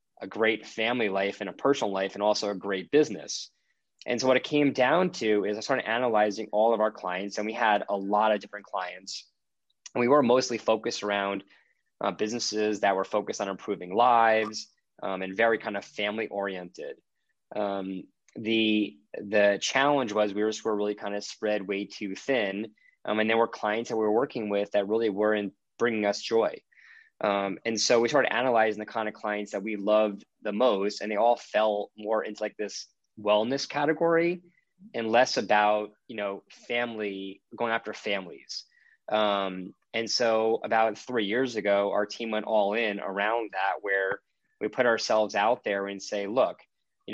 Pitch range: 100-115 Hz